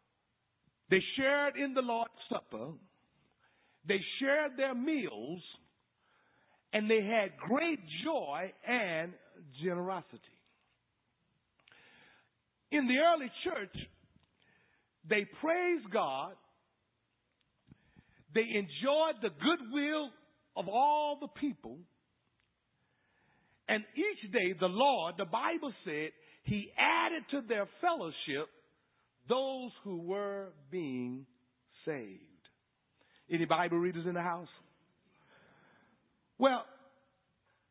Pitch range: 175-275 Hz